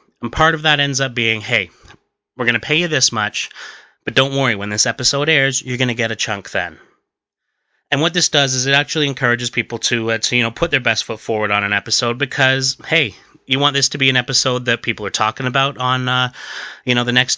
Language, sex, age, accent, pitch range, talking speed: English, male, 30-49, American, 105-130 Hz, 245 wpm